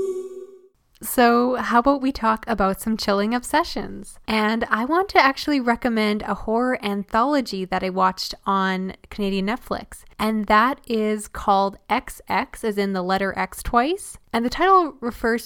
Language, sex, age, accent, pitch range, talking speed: English, female, 10-29, American, 200-245 Hz, 150 wpm